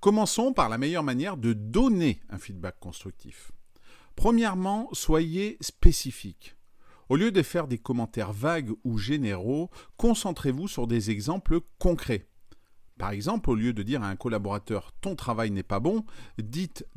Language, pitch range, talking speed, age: French, 110-160 Hz, 150 wpm, 40-59